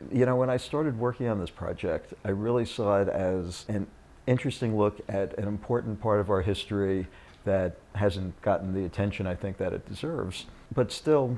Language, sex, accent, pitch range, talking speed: English, male, American, 90-110 Hz, 190 wpm